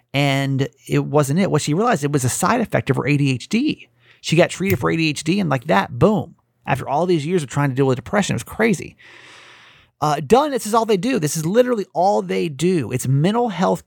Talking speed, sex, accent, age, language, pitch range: 230 wpm, male, American, 30-49, English, 130-175 Hz